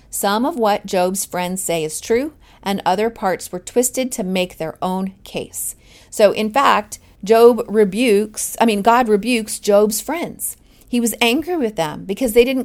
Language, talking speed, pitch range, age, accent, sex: English, 175 wpm, 190-230 Hz, 40-59, American, female